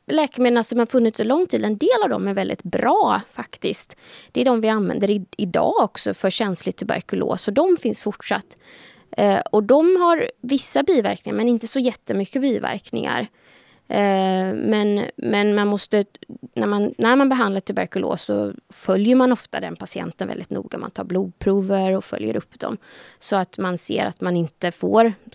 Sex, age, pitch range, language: female, 20-39, 190-235 Hz, Swedish